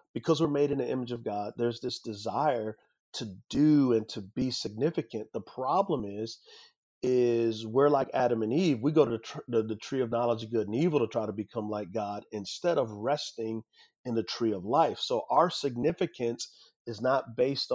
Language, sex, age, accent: English, male, 40-59, American